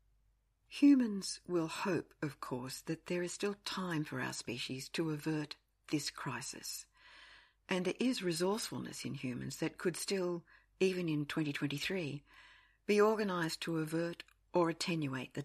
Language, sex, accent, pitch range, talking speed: English, female, Australian, 140-185 Hz, 140 wpm